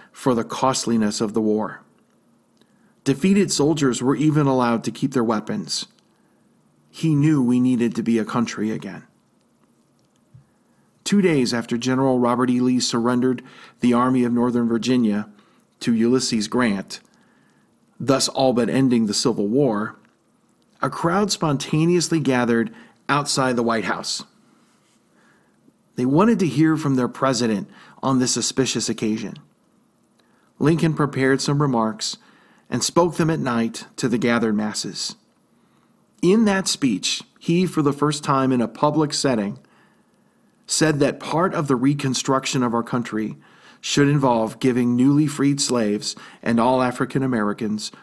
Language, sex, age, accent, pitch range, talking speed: English, male, 40-59, American, 120-150 Hz, 135 wpm